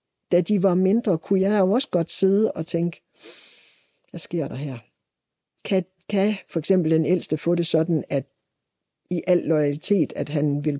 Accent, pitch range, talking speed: native, 150-195 Hz, 180 wpm